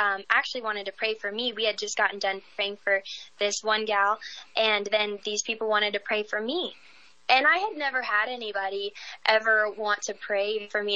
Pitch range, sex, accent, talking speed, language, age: 205-245 Hz, female, American, 210 wpm, English, 10-29